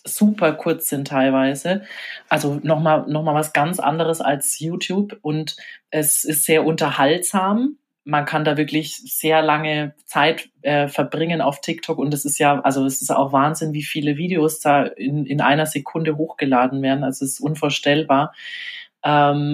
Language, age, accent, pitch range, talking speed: English, 20-39, German, 140-160 Hz, 165 wpm